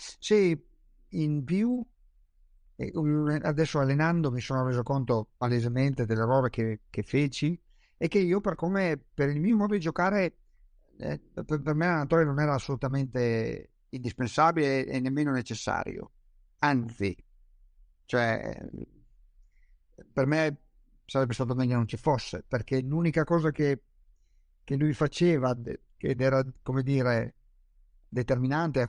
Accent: native